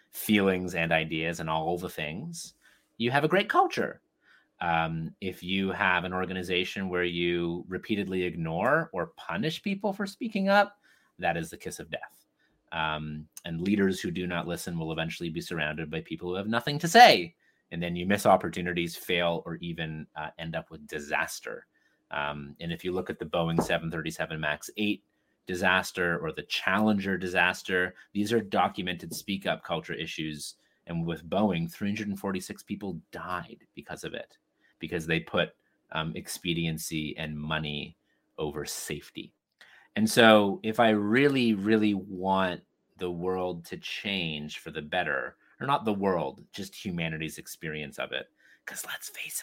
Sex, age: male, 30-49